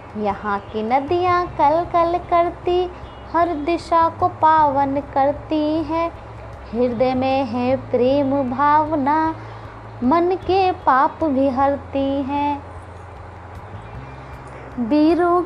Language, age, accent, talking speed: Hindi, 20-39, native, 95 wpm